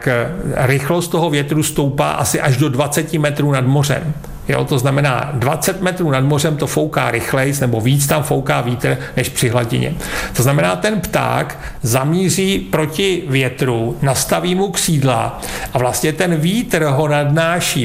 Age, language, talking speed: 50-69, Czech, 160 wpm